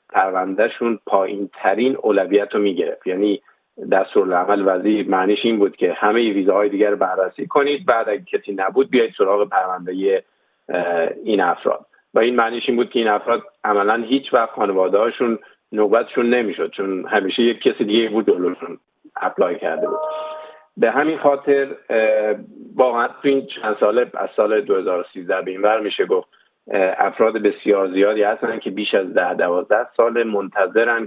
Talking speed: 155 wpm